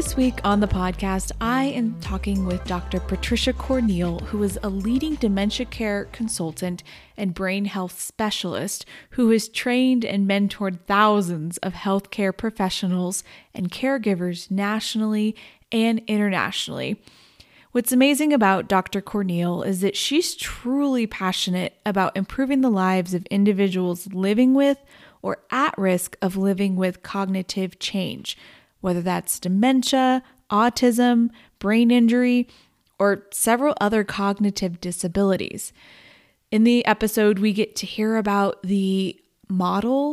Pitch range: 190-240 Hz